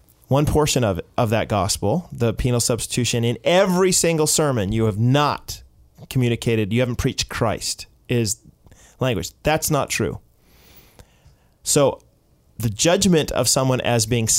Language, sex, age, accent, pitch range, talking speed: English, male, 30-49, American, 110-135 Hz, 140 wpm